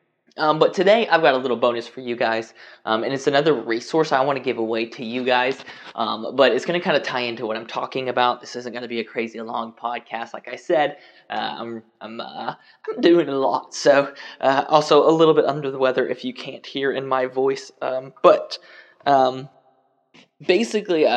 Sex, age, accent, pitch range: male, 20-39, American, 120-150 Hz